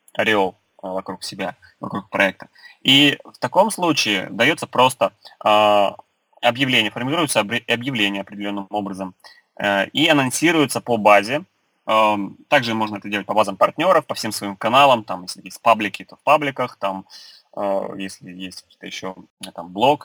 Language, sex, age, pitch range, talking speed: Russian, male, 20-39, 100-120 Hz, 145 wpm